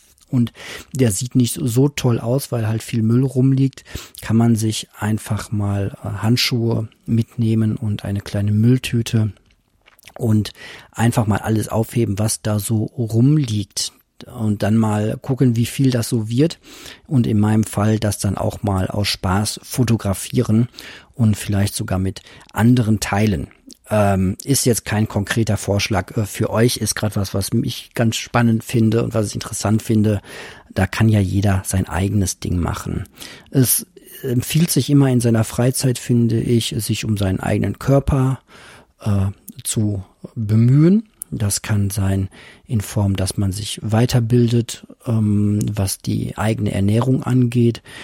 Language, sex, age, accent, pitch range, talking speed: German, male, 40-59, German, 105-120 Hz, 145 wpm